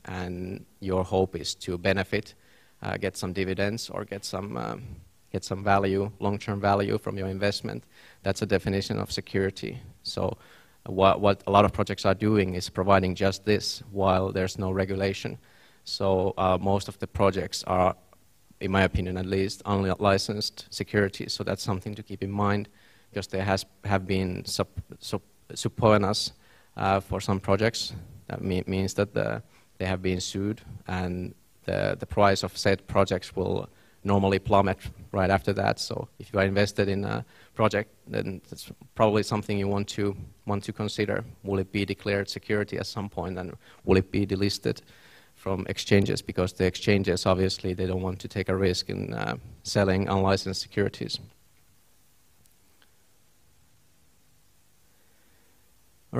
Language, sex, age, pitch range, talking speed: Finnish, male, 30-49, 95-105 Hz, 160 wpm